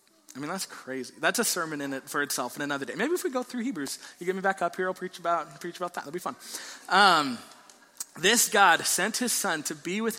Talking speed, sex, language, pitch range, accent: 265 wpm, male, English, 155-230 Hz, American